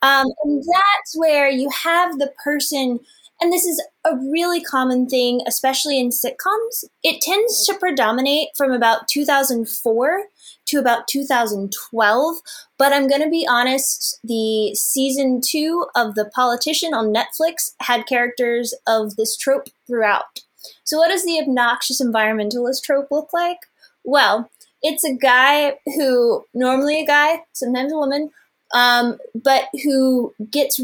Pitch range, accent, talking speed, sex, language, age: 235-300 Hz, American, 140 wpm, female, English, 20-39